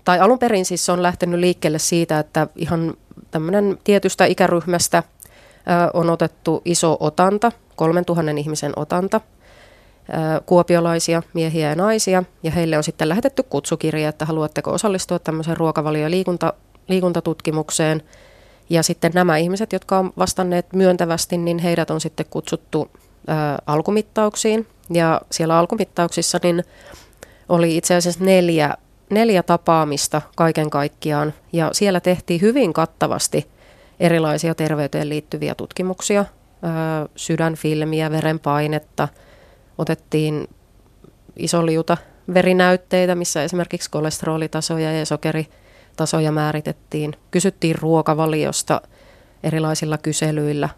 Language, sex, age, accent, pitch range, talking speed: Finnish, female, 30-49, native, 155-180 Hz, 110 wpm